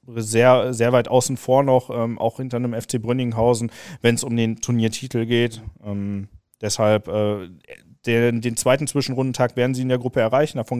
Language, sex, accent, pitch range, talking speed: German, male, German, 115-145 Hz, 180 wpm